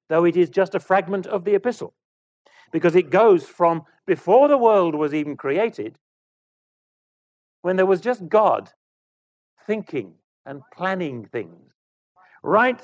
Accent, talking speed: British, 135 wpm